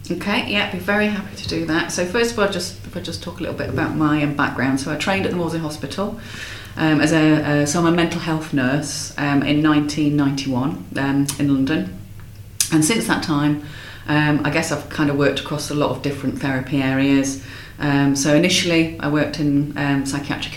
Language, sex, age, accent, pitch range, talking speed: English, female, 30-49, British, 135-155 Hz, 215 wpm